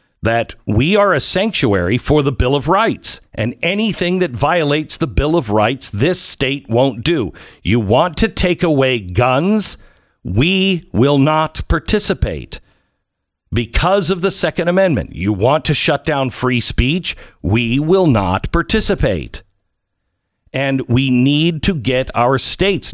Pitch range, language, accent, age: 115-185 Hz, English, American, 50-69